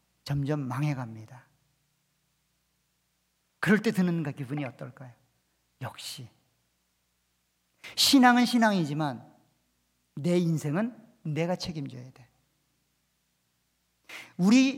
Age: 40-59